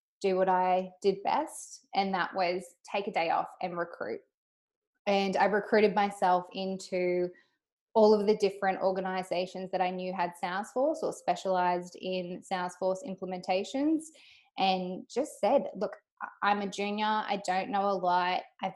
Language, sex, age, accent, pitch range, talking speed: English, female, 20-39, Australian, 185-215 Hz, 150 wpm